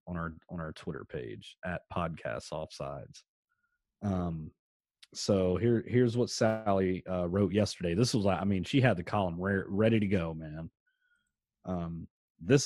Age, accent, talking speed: 30-49, American, 155 wpm